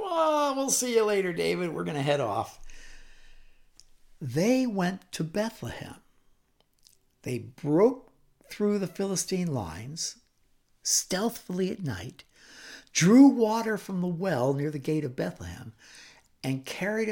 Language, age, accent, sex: English, 60-79, American, male